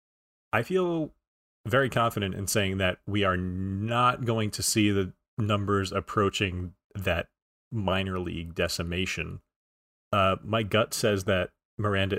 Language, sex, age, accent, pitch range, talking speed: English, male, 30-49, American, 90-115 Hz, 130 wpm